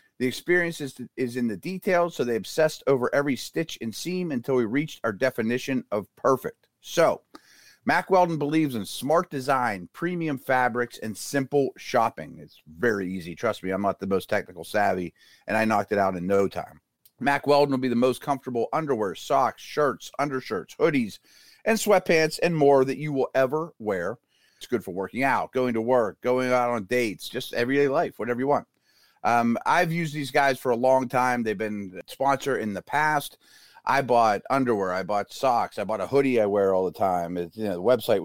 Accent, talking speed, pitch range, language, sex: American, 200 wpm, 110-150 Hz, English, male